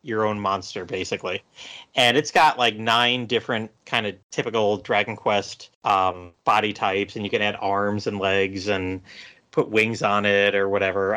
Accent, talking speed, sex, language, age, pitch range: American, 170 wpm, male, English, 30-49, 95-115 Hz